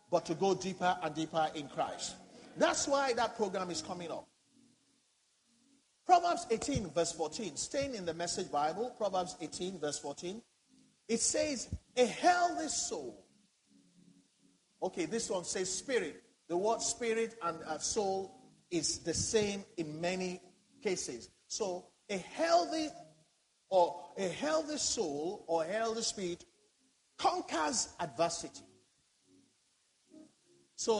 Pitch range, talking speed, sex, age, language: 175-290 Hz, 120 wpm, male, 50-69, English